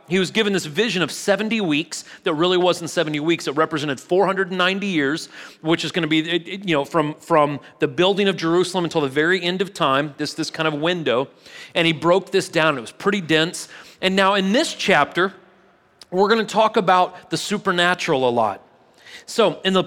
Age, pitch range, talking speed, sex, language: 30-49, 150-185 Hz, 200 wpm, male, English